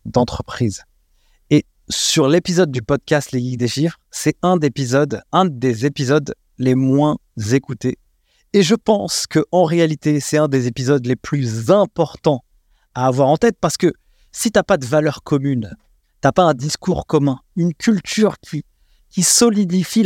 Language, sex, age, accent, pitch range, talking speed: French, male, 30-49, French, 130-175 Hz, 160 wpm